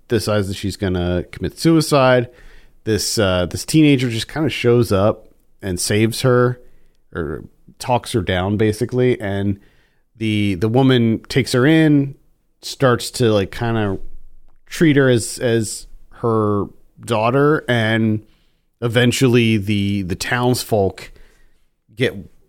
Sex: male